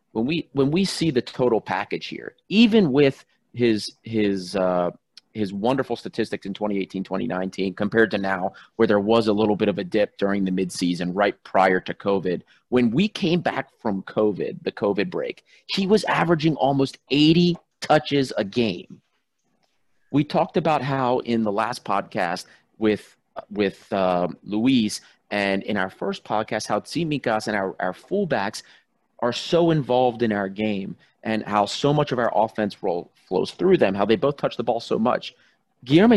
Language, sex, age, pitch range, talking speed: English, male, 30-49, 105-165 Hz, 175 wpm